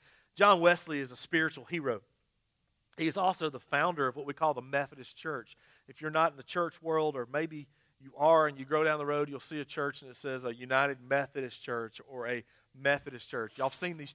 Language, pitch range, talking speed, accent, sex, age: English, 145-175 Hz, 230 wpm, American, male, 40-59